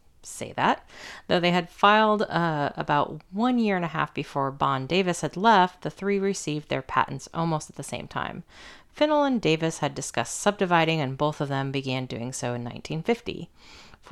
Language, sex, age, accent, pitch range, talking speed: English, female, 30-49, American, 135-180 Hz, 185 wpm